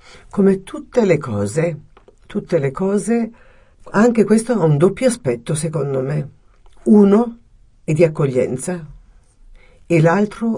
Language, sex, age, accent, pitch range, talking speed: Italian, female, 50-69, native, 130-175 Hz, 120 wpm